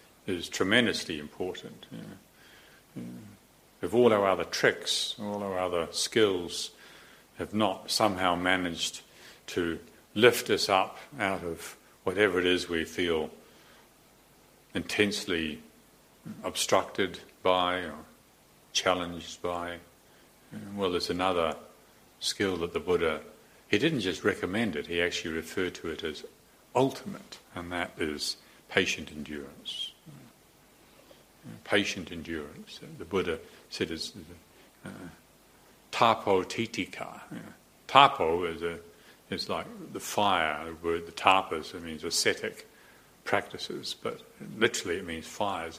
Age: 50-69